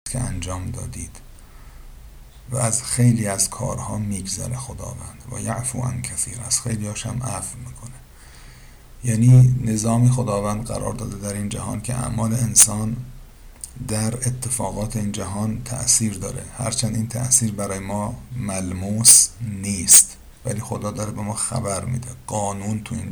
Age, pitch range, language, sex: 50-69, 105-125 Hz, Persian, male